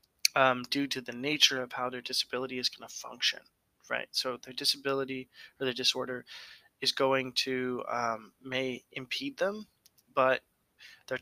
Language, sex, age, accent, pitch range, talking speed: English, male, 20-39, American, 125-140 Hz, 155 wpm